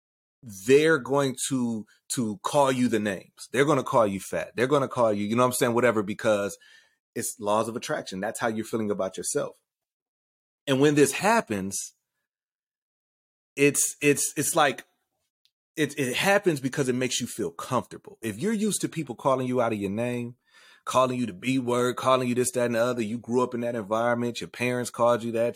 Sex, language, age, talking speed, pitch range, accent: male, English, 30-49, 205 wpm, 120-155 Hz, American